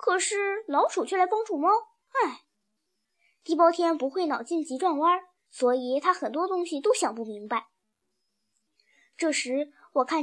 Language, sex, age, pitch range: Chinese, male, 20-39, 270-360 Hz